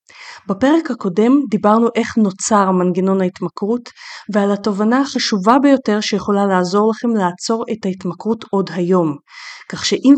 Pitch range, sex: 185-235 Hz, female